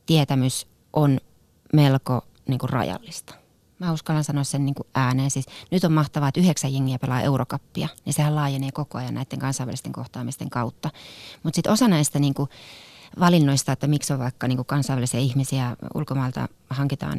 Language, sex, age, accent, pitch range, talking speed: Finnish, female, 30-49, native, 135-170 Hz, 160 wpm